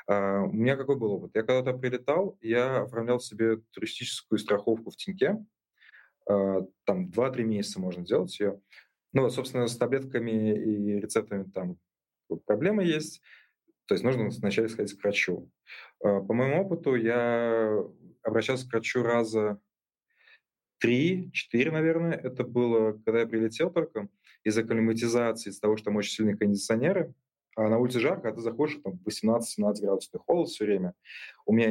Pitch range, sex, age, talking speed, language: 105-135 Hz, male, 20-39, 155 wpm, Russian